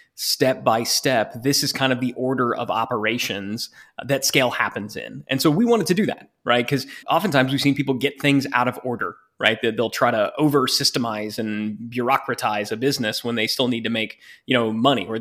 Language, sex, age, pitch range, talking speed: English, male, 20-39, 120-140 Hz, 210 wpm